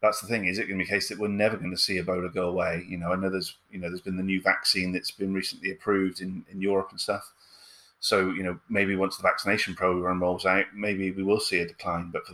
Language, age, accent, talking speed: English, 30-49, British, 280 wpm